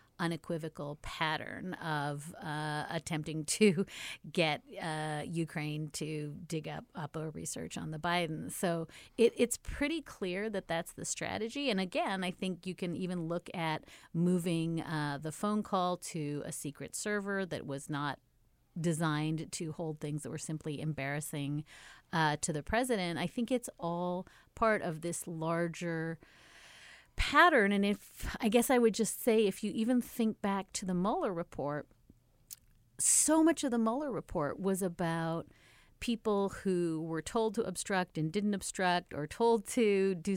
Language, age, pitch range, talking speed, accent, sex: English, 40-59, 155-205 Hz, 160 wpm, American, female